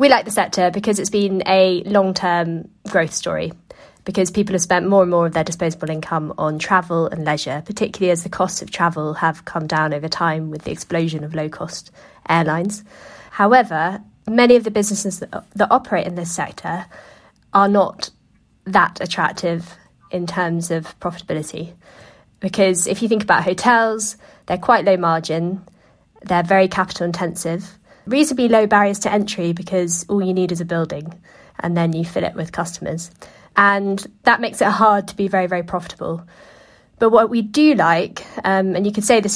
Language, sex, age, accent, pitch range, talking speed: English, female, 20-39, British, 170-200 Hz, 175 wpm